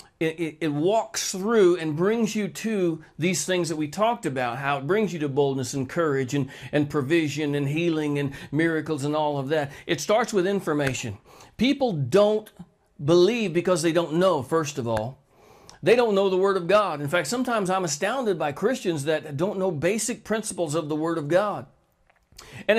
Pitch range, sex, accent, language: 150-205 Hz, male, American, English